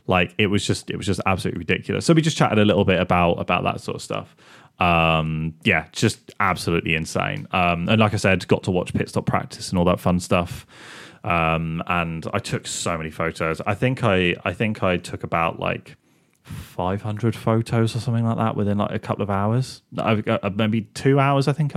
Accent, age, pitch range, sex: British, 30-49, 90-115 Hz, male